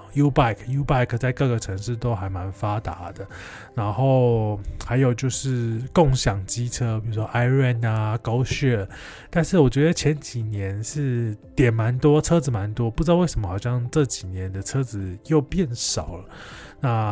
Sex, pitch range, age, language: male, 100-135 Hz, 20-39, Chinese